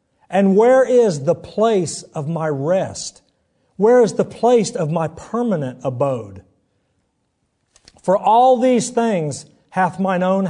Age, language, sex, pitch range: 50-69, English, male, 150-210 Hz